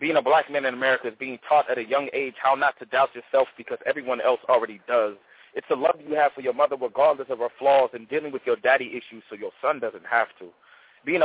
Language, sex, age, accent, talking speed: English, male, 30-49, American, 255 wpm